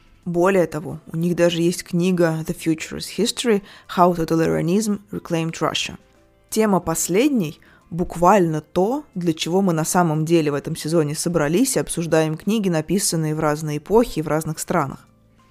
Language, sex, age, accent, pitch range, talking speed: Russian, female, 20-39, native, 160-195 Hz, 165 wpm